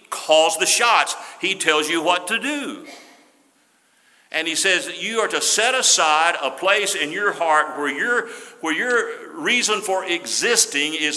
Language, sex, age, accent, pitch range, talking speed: English, male, 50-69, American, 140-215 Hz, 165 wpm